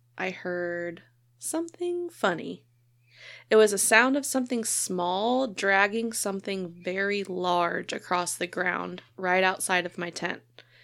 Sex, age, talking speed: female, 20-39, 125 wpm